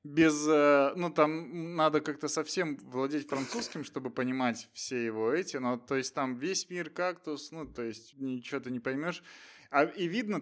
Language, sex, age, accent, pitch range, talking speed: Russian, male, 20-39, native, 130-175 Hz, 180 wpm